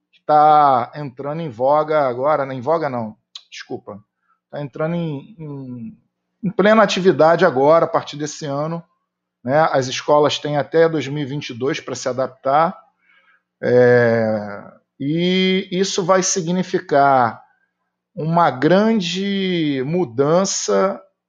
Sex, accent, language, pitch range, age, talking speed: male, Brazilian, Portuguese, 140-175 Hz, 40-59, 105 wpm